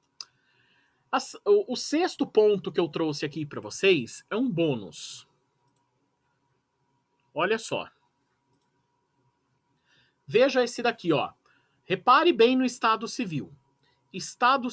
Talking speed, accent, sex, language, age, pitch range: 100 wpm, Brazilian, male, Portuguese, 40-59, 140-225 Hz